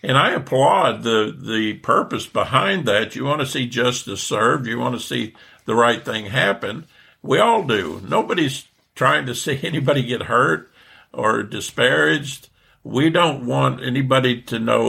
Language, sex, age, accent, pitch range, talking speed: English, male, 60-79, American, 115-135 Hz, 160 wpm